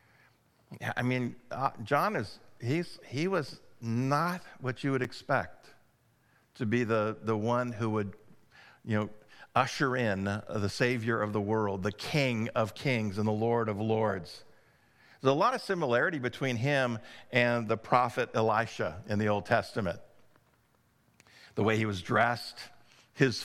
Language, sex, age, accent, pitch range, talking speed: English, male, 50-69, American, 115-135 Hz, 150 wpm